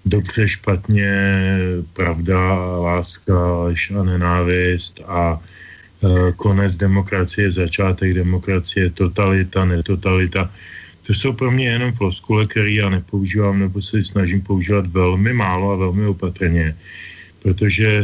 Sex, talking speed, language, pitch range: male, 110 wpm, Slovak, 95-110 Hz